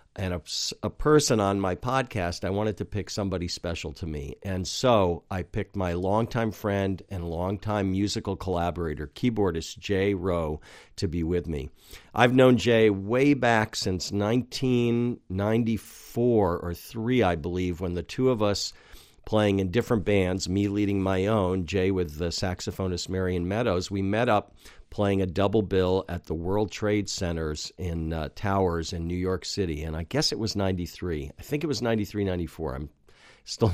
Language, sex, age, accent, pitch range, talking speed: English, male, 50-69, American, 85-105 Hz, 170 wpm